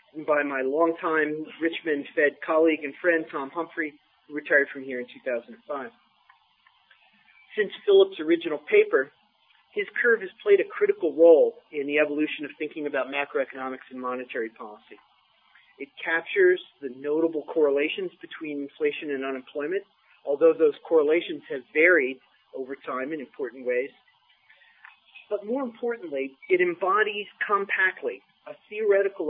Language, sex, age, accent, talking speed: English, male, 40-59, American, 130 wpm